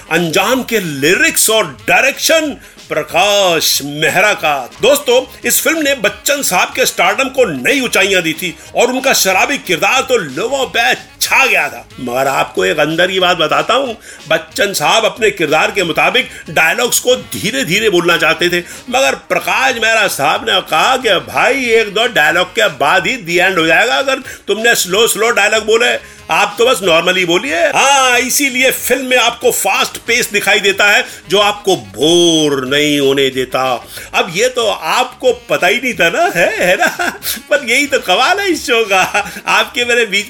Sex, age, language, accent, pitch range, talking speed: male, 50-69, Hindi, native, 185-275 Hz, 170 wpm